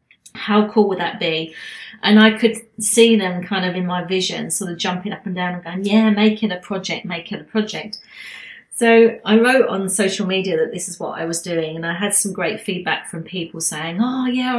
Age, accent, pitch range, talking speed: 30-49, British, 180-220 Hz, 220 wpm